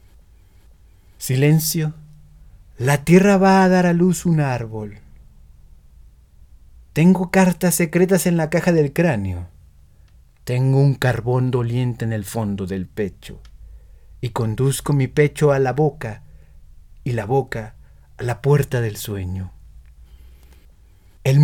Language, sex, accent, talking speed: Spanish, male, Mexican, 120 wpm